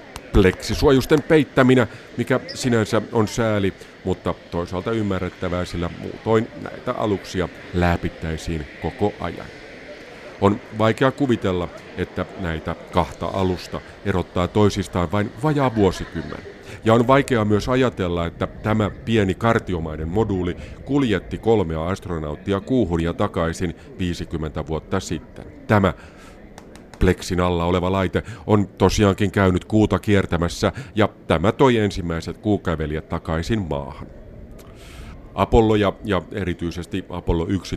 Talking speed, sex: 110 wpm, male